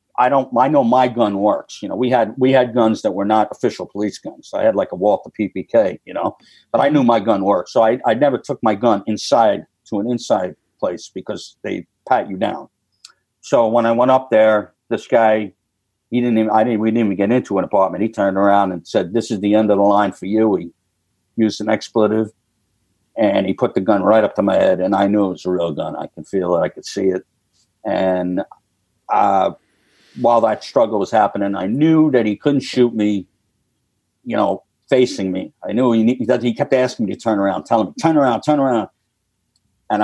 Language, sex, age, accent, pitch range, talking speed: English, male, 50-69, American, 100-115 Hz, 225 wpm